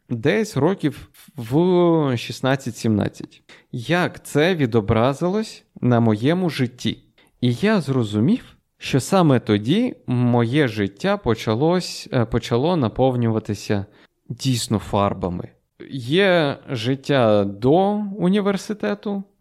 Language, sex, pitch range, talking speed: Ukrainian, male, 110-160 Hz, 85 wpm